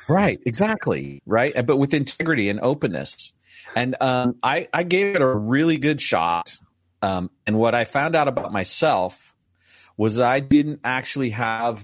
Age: 40-59